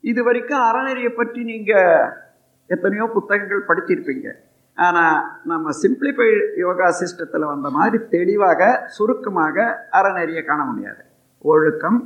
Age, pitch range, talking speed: 50-69, 165-265 Hz, 105 wpm